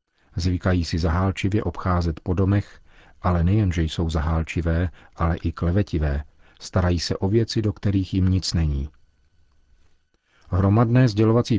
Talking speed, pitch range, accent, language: 125 wpm, 80-100 Hz, native, Czech